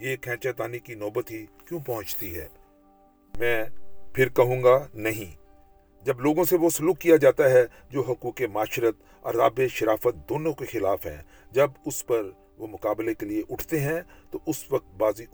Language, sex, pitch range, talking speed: Urdu, male, 105-145 Hz, 170 wpm